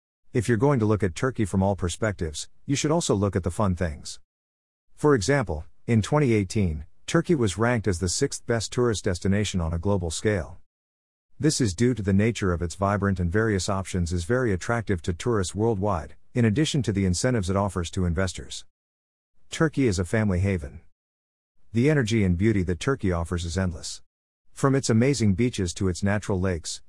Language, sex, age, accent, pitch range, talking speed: English, male, 50-69, American, 85-115 Hz, 185 wpm